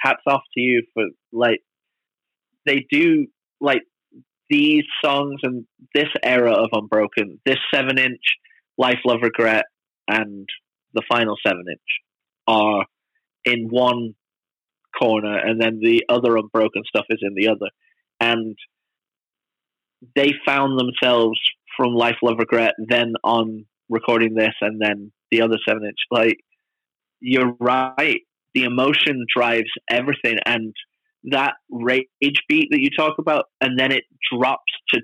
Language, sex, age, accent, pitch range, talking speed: English, male, 30-49, British, 120-160 Hz, 135 wpm